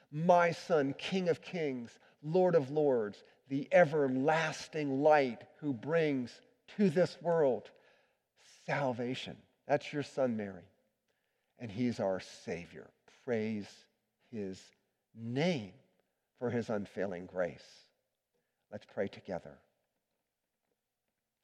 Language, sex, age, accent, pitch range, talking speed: English, male, 50-69, American, 130-175 Hz, 100 wpm